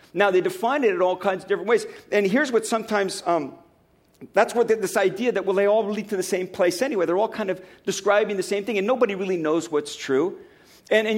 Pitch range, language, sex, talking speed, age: 190-235 Hz, English, male, 240 wpm, 50-69